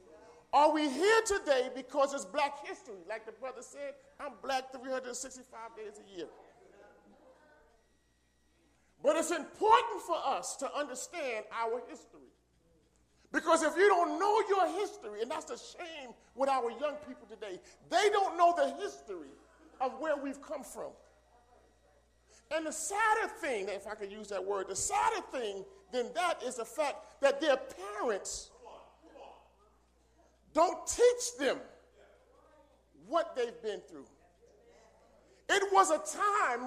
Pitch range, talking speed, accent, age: 265-380 Hz, 140 wpm, American, 40-59